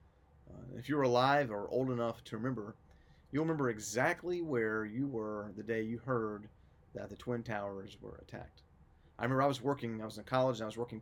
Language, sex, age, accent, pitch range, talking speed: English, male, 30-49, American, 95-130 Hz, 200 wpm